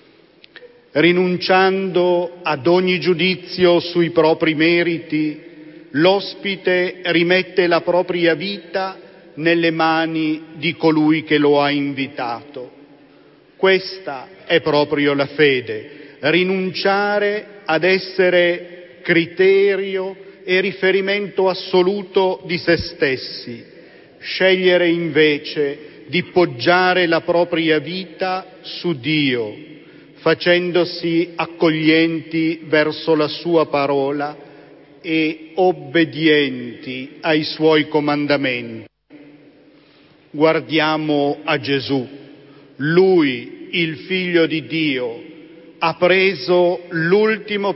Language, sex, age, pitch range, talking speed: Slovak, male, 40-59, 150-180 Hz, 85 wpm